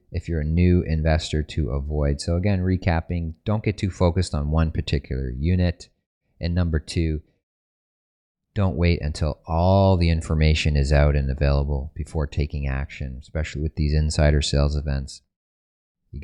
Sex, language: male, English